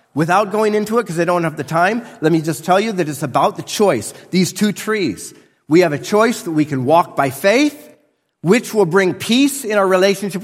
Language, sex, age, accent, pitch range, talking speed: English, male, 40-59, American, 175-255 Hz, 230 wpm